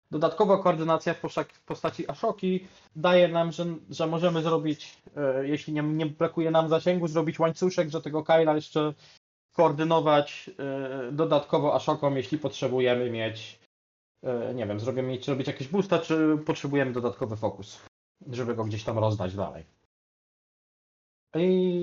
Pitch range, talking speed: 135-170 Hz, 125 wpm